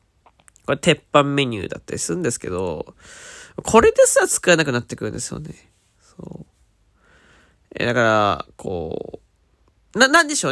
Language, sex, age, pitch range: Japanese, male, 20-39, 115-195 Hz